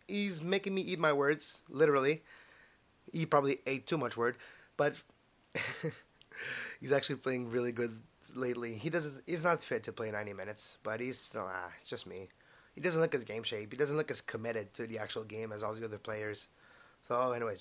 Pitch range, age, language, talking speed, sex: 115-150 Hz, 20-39, English, 195 wpm, male